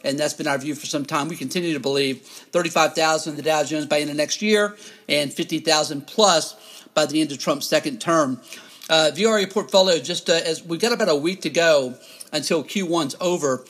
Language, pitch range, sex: English, 150-185 Hz, male